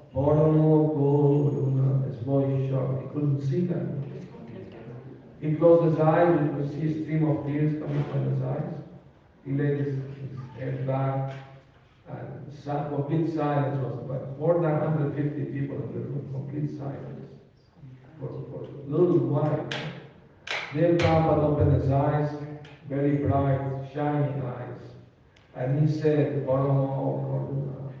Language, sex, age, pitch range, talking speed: Spanish, male, 50-69, 135-155 Hz, 135 wpm